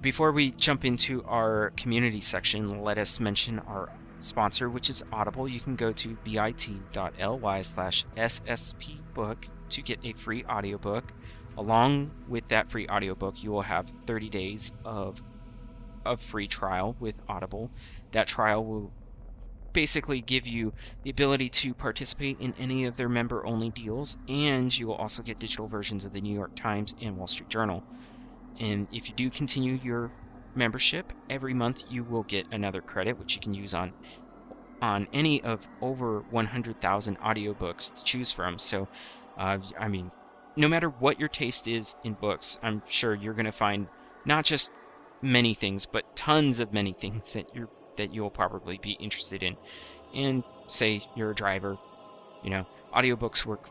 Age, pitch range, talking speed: 30-49, 105-125 Hz, 165 wpm